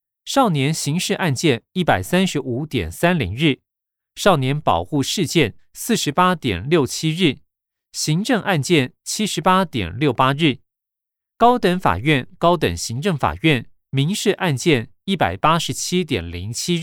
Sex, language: male, Chinese